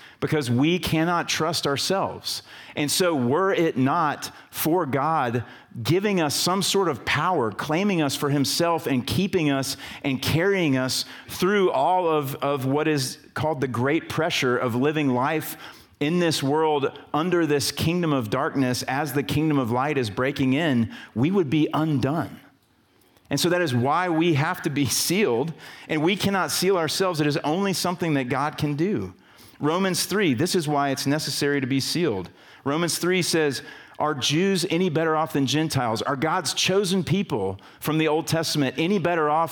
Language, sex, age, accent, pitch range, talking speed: English, male, 40-59, American, 130-170 Hz, 175 wpm